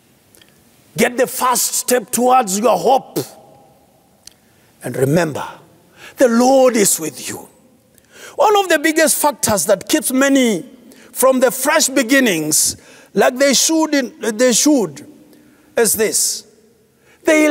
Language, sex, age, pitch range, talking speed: English, male, 50-69, 230-315 Hz, 120 wpm